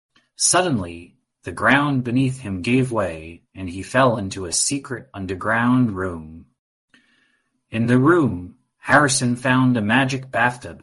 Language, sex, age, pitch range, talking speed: English, male, 30-49, 100-135 Hz, 125 wpm